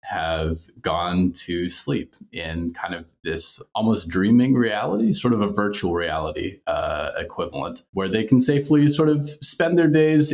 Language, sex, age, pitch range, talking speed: English, male, 30-49, 90-130 Hz, 155 wpm